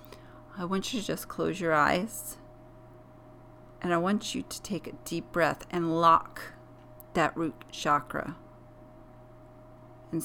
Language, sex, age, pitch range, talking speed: English, female, 40-59, 125-175 Hz, 135 wpm